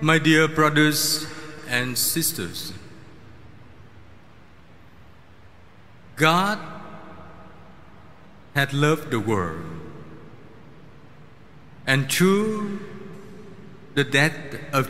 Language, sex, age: Vietnamese, male, 50-69